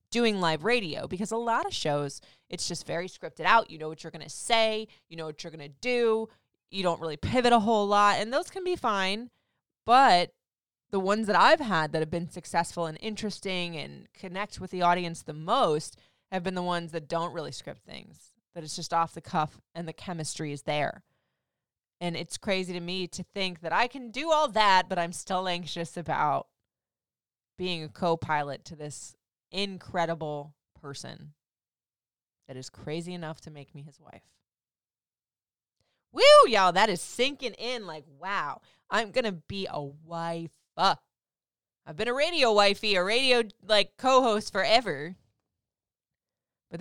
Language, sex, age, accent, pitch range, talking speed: English, female, 20-39, American, 155-210 Hz, 175 wpm